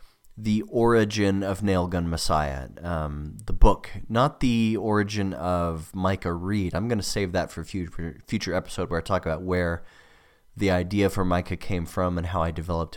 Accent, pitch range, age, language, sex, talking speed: American, 90-110 Hz, 30-49, English, male, 175 wpm